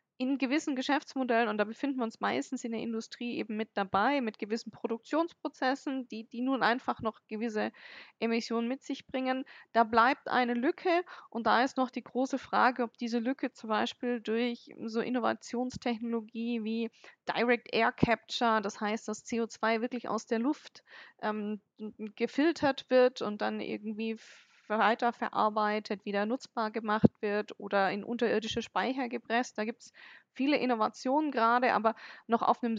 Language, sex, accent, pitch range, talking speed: German, female, German, 215-250 Hz, 155 wpm